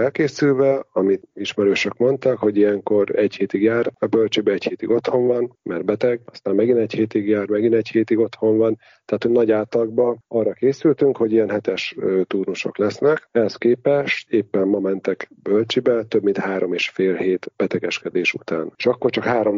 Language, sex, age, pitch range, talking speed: Hungarian, male, 40-59, 95-115 Hz, 170 wpm